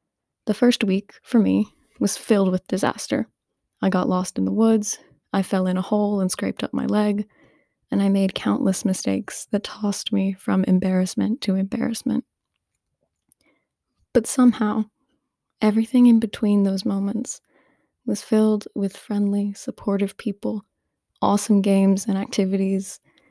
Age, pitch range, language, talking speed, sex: 20-39, 190-220 Hz, English, 140 wpm, female